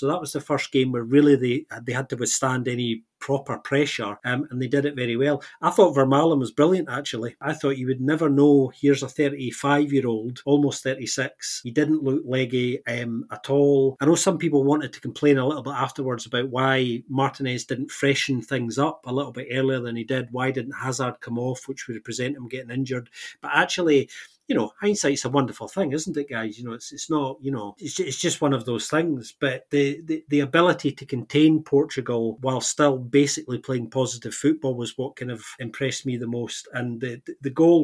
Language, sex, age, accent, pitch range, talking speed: English, male, 30-49, British, 125-145 Hz, 210 wpm